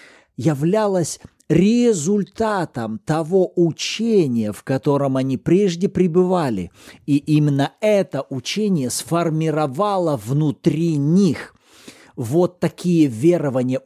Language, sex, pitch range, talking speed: Russian, male, 150-205 Hz, 80 wpm